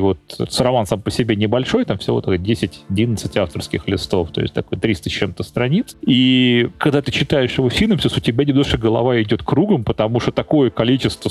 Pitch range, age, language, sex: 115-140 Hz, 30-49, Russian, male